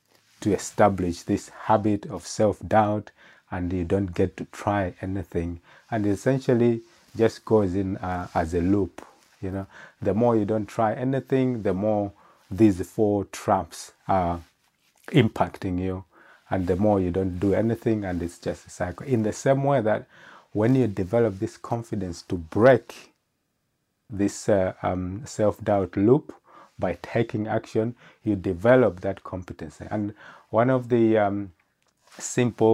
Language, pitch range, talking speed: English, 95-115 Hz, 150 wpm